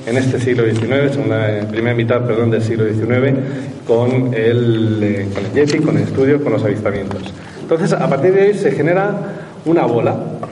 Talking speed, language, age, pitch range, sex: 185 wpm, Spanish, 40-59, 120-160 Hz, male